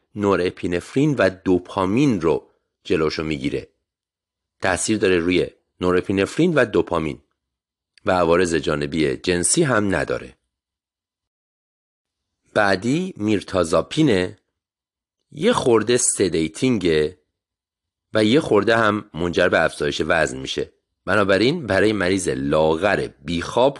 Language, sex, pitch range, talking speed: Persian, male, 80-105 Hz, 95 wpm